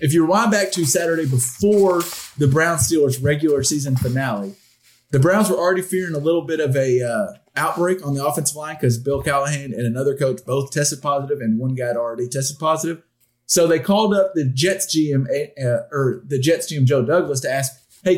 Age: 30-49